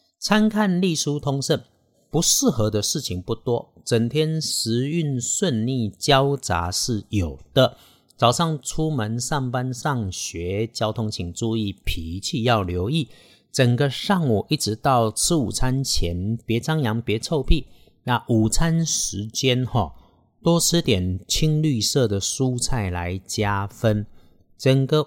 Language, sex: Chinese, male